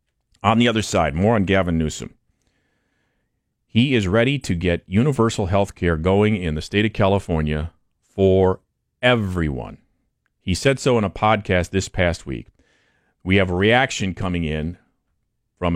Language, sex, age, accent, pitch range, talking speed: English, male, 40-59, American, 90-125 Hz, 150 wpm